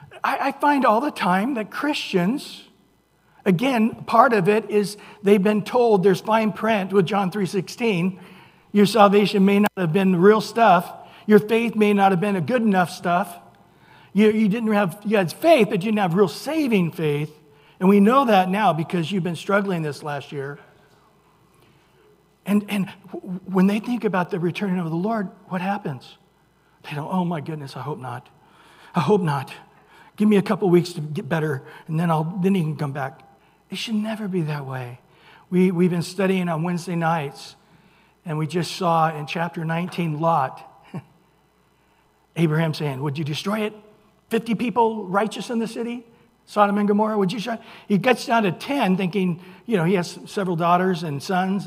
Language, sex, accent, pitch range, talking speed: English, male, American, 160-210 Hz, 185 wpm